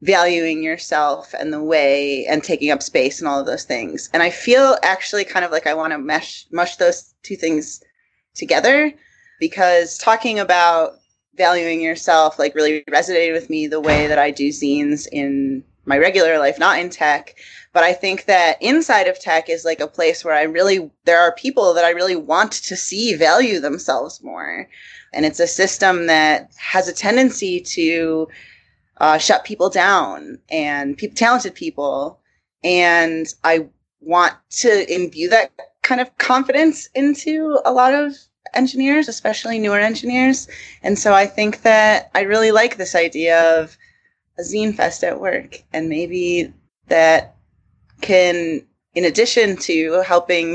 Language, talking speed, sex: English, 165 wpm, female